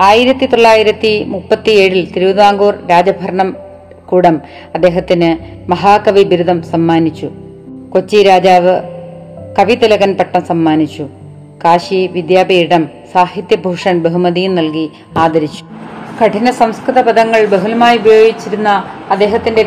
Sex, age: female, 30-49